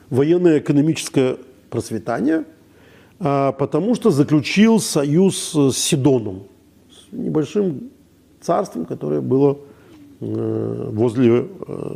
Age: 50-69